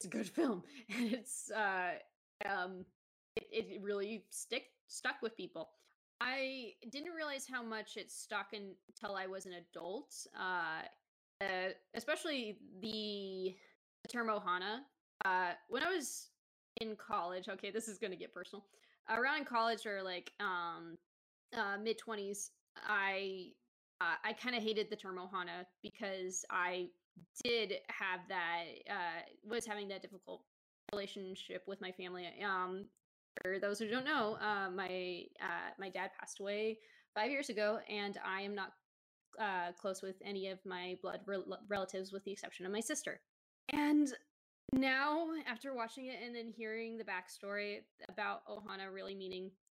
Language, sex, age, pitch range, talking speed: English, female, 20-39, 190-230 Hz, 150 wpm